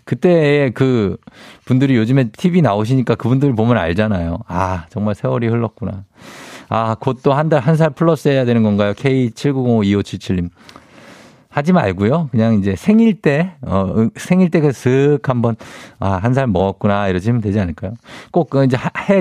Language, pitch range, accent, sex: Korean, 110-160 Hz, native, male